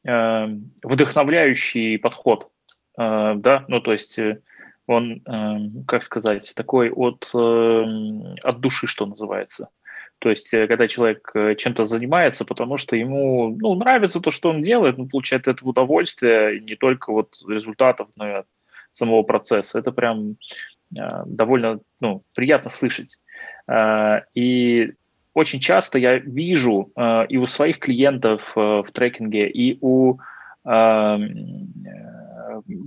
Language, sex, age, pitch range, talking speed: Russian, male, 20-39, 110-135 Hz, 115 wpm